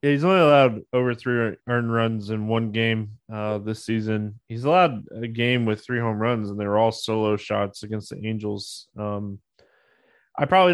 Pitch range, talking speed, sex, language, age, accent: 105-135 Hz, 190 wpm, male, English, 20-39, American